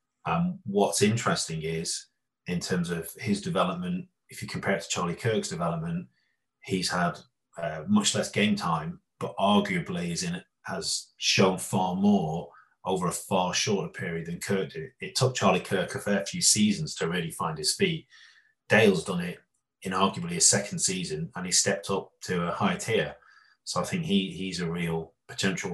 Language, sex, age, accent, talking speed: English, male, 30-49, British, 175 wpm